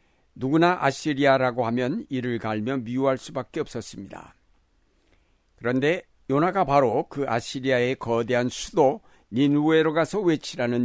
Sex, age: male, 60-79